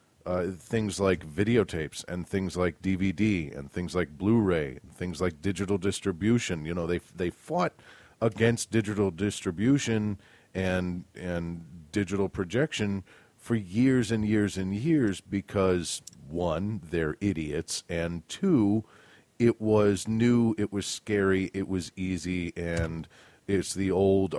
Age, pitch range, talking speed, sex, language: 40-59, 90-115 Hz, 135 wpm, male, English